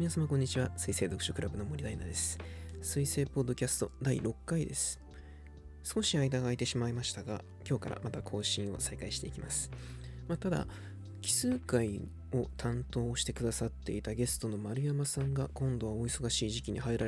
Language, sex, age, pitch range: Japanese, male, 20-39, 80-130 Hz